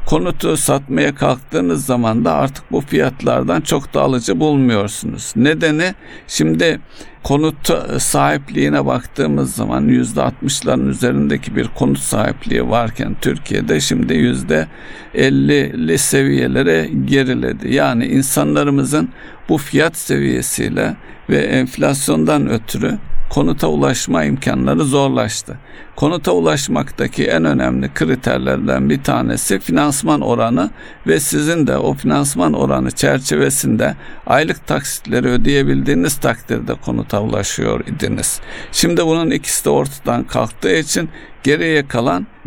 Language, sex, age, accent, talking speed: Turkish, male, 60-79, native, 105 wpm